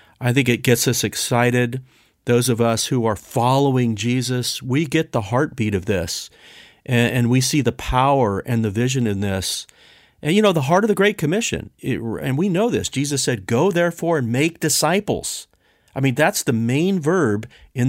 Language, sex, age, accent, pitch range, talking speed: English, male, 40-59, American, 115-150 Hz, 190 wpm